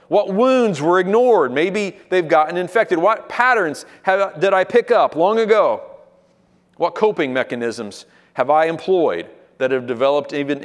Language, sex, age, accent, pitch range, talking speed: English, male, 40-59, American, 145-200 Hz, 145 wpm